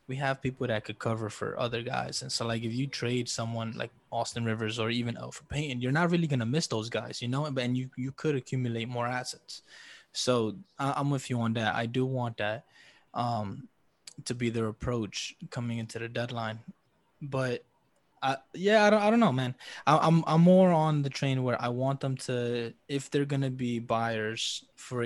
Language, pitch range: English, 115-140 Hz